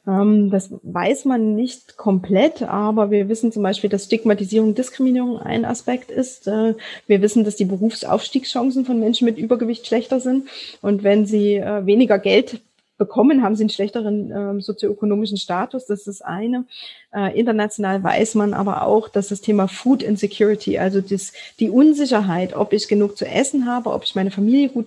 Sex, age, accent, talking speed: female, 20-39, German, 170 wpm